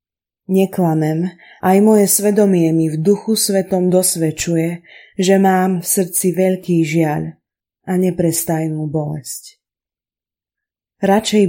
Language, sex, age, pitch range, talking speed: Slovak, female, 20-39, 160-190 Hz, 100 wpm